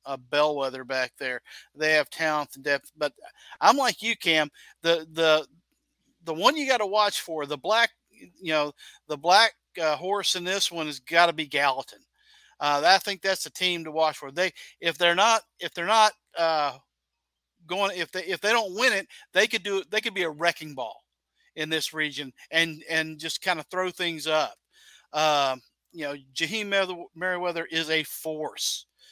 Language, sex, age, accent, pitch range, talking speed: English, male, 50-69, American, 150-185 Hz, 190 wpm